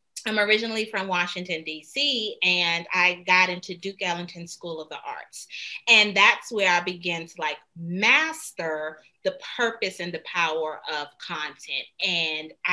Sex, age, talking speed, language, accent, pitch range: female, 30-49, 145 wpm, English, American, 170-215 Hz